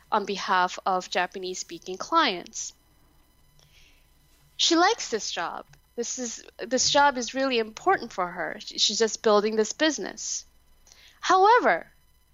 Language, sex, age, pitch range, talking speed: English, female, 20-39, 205-280 Hz, 120 wpm